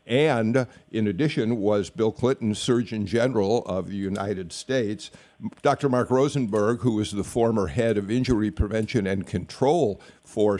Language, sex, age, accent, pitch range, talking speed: English, male, 50-69, American, 105-145 Hz, 145 wpm